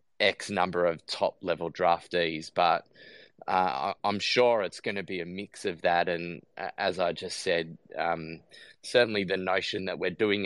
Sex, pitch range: male, 85-95 Hz